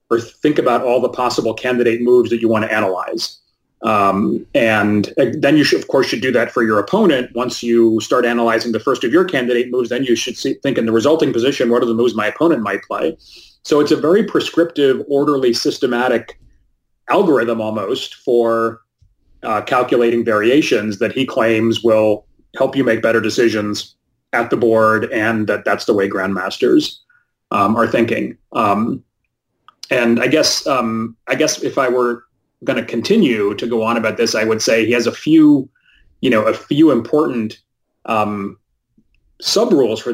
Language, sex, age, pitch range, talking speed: English, male, 30-49, 110-135 Hz, 180 wpm